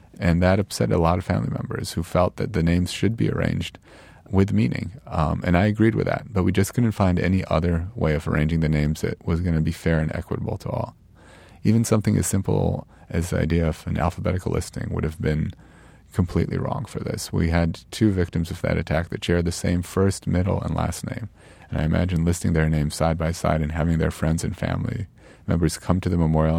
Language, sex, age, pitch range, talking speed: English, male, 30-49, 85-105 Hz, 225 wpm